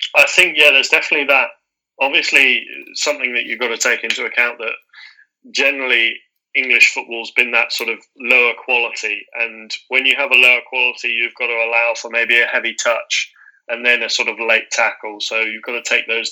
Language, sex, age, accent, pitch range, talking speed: English, male, 20-39, British, 115-130 Hz, 200 wpm